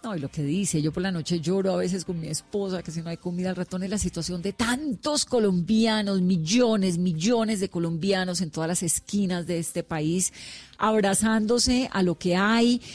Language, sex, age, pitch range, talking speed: Spanish, female, 40-59, 170-215 Hz, 205 wpm